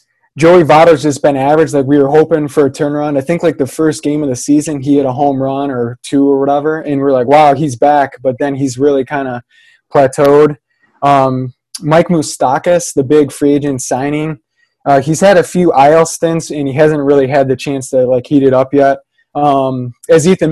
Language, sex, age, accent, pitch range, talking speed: English, male, 20-39, American, 135-155 Hz, 215 wpm